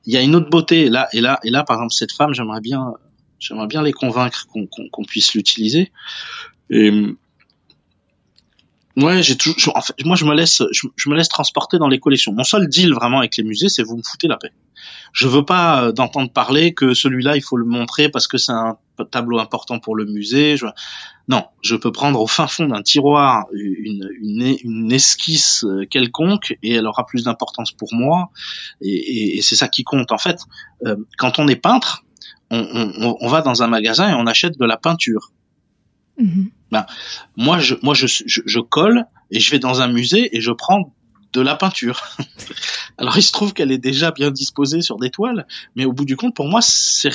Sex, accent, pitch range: male, French, 115-160 Hz